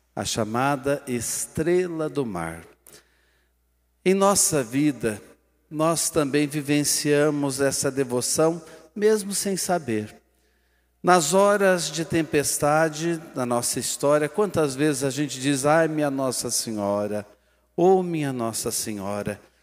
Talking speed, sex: 110 wpm, male